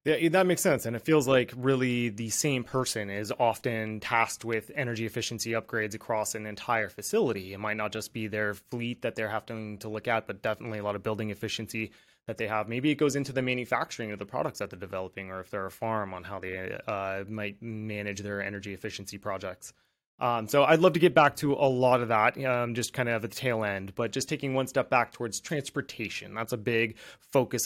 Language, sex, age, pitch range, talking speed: English, male, 20-39, 105-125 Hz, 230 wpm